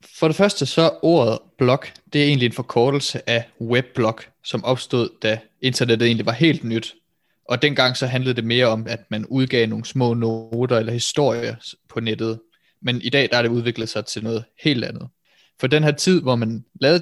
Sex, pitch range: male, 115-135 Hz